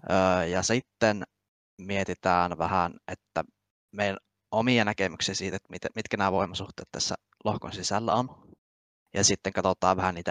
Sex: male